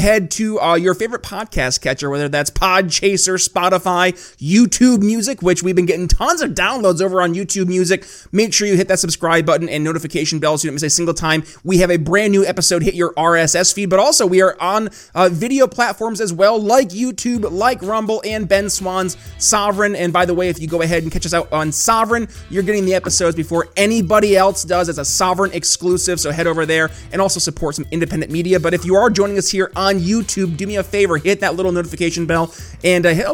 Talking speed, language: 230 wpm, English